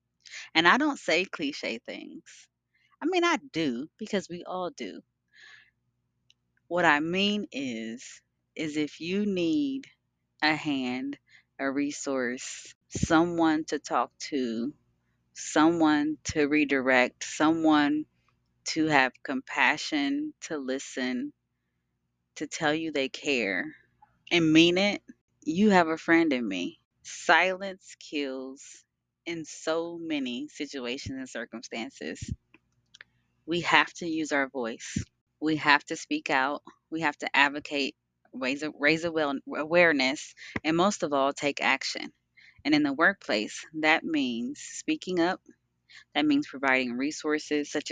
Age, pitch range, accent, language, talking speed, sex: 30-49, 140-180 Hz, American, English, 125 wpm, female